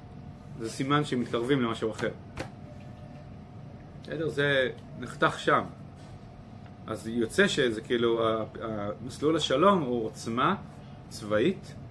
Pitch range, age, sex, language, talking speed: 115-140 Hz, 30-49, male, Hebrew, 90 wpm